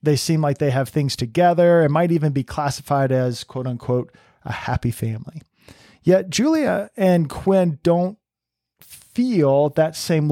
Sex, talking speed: male, 150 wpm